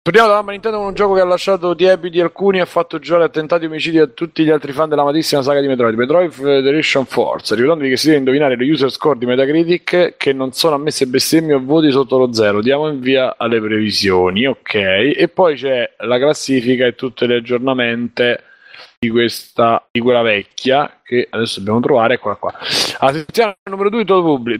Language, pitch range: Italian, 130-170 Hz